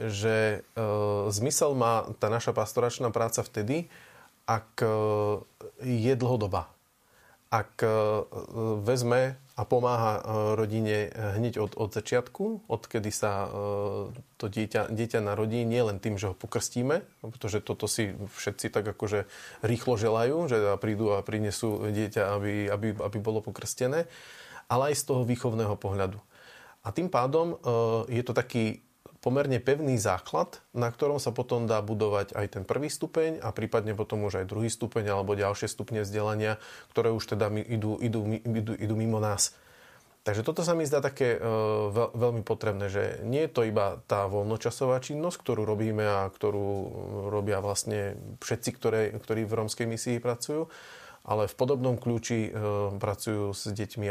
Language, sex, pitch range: Slovak, male, 105-120 Hz